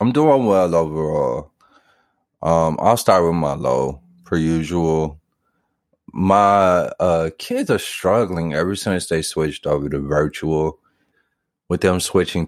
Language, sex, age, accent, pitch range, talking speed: English, male, 30-49, American, 75-95 Hz, 130 wpm